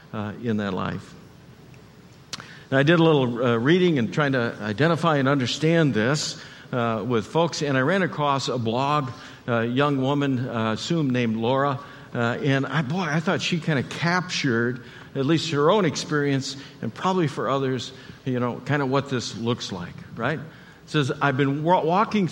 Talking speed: 185 wpm